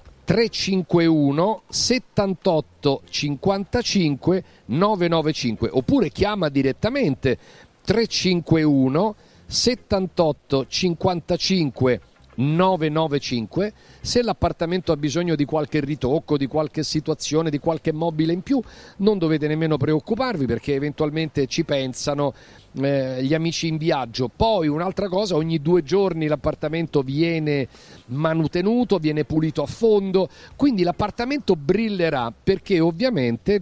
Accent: native